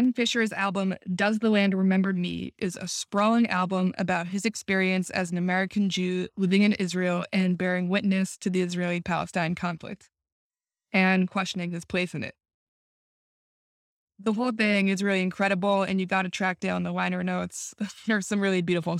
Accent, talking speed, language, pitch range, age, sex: American, 175 wpm, English, 185-215 Hz, 20-39, female